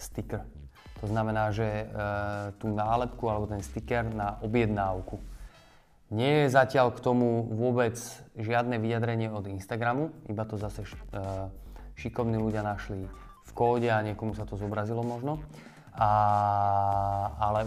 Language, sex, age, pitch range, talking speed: Slovak, male, 20-39, 105-125 Hz, 135 wpm